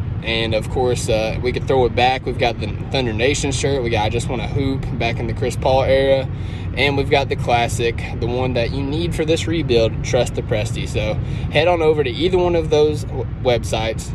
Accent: American